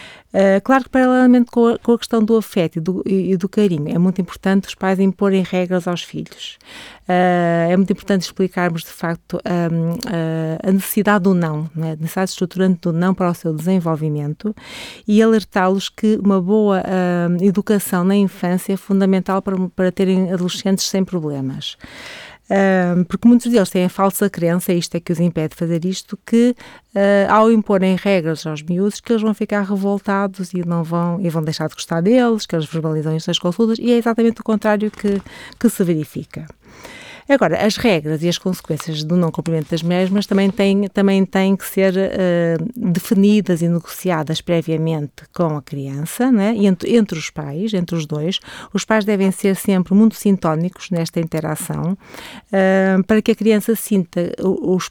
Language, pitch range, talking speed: Portuguese, 170-205 Hz, 175 wpm